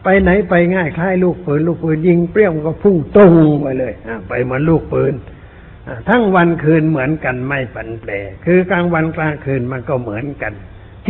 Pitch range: 120-165 Hz